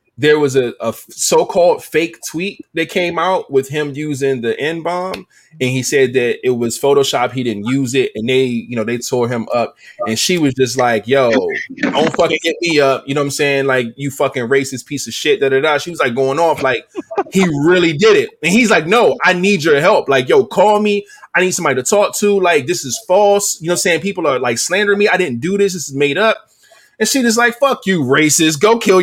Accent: American